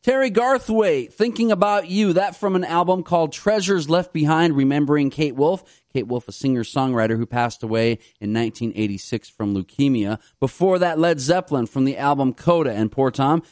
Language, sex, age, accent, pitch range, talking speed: English, male, 30-49, American, 130-185 Hz, 170 wpm